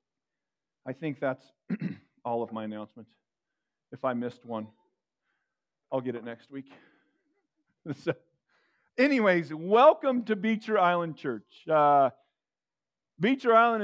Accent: American